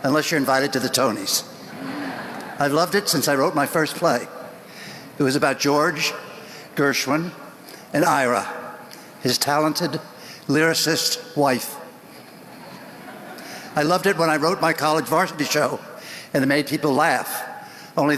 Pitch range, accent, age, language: 135-160 Hz, American, 60-79, English